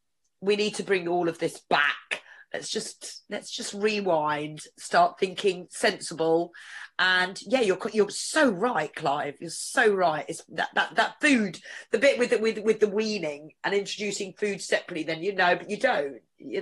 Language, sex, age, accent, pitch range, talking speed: English, female, 40-59, British, 175-220 Hz, 180 wpm